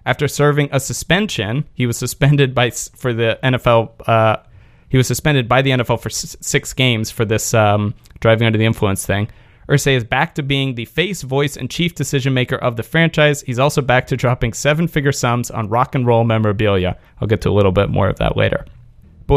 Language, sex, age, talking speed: English, male, 30-49, 210 wpm